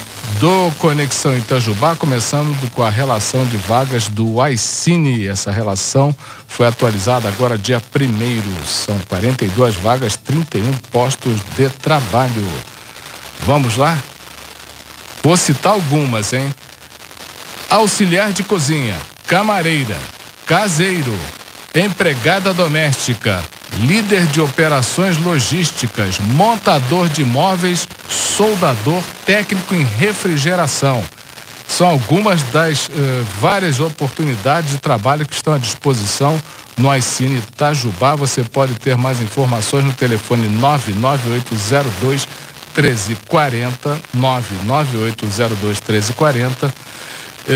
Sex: male